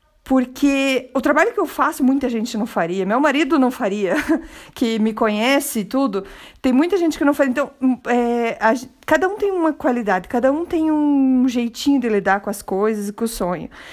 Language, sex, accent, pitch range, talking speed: Portuguese, female, Brazilian, 235-315 Hz, 205 wpm